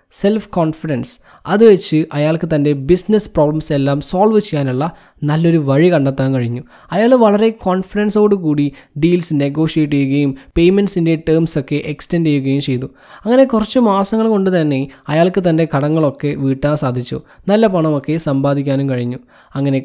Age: 20-39